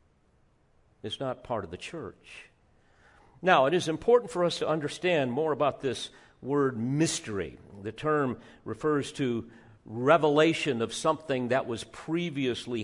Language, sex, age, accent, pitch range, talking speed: English, male, 50-69, American, 115-165 Hz, 135 wpm